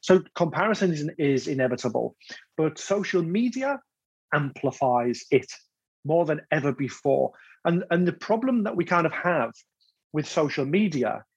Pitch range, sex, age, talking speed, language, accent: 140-175 Hz, male, 30-49, 130 wpm, English, British